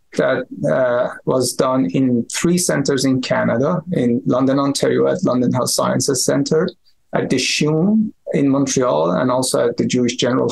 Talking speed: 160 wpm